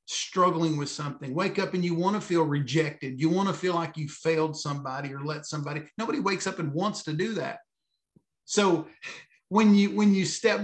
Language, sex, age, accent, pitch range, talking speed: English, male, 50-69, American, 150-185 Hz, 205 wpm